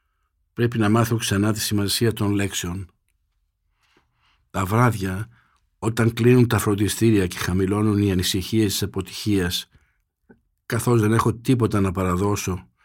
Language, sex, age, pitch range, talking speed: Greek, male, 60-79, 90-105 Hz, 120 wpm